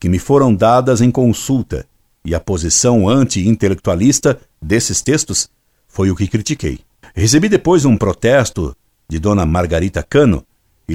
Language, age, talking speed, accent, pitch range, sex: Portuguese, 60-79, 135 wpm, Brazilian, 90-120 Hz, male